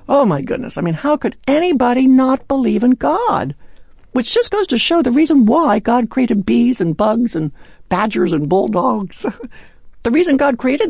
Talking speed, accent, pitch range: 180 wpm, American, 155-255 Hz